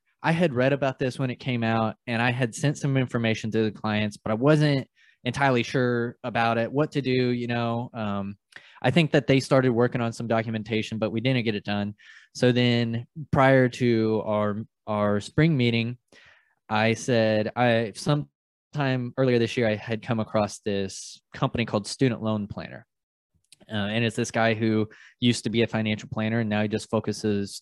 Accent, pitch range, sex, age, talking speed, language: American, 110-125 Hz, male, 20-39, 190 wpm, English